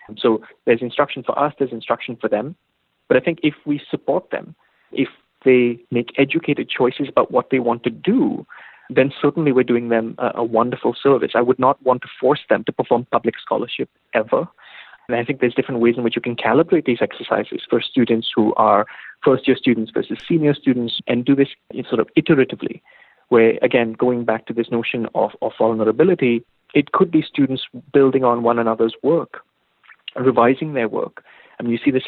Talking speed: 195 wpm